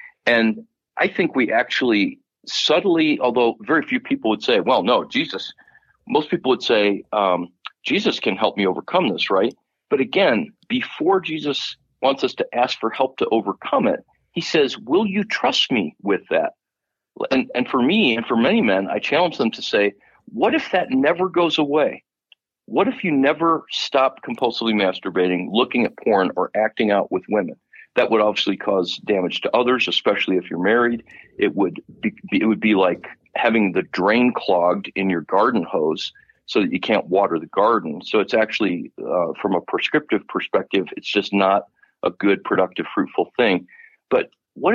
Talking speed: 180 wpm